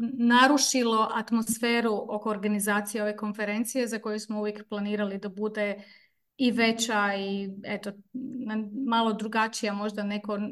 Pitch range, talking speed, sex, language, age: 210-255 Hz, 120 wpm, female, Croatian, 30-49